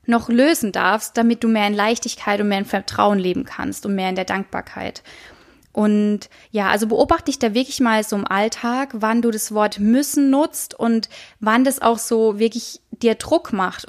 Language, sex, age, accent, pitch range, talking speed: German, female, 20-39, German, 210-265 Hz, 195 wpm